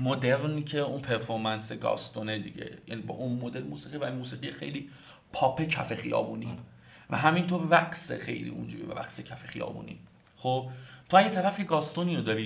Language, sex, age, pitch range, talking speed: Persian, male, 40-59, 115-150 Hz, 165 wpm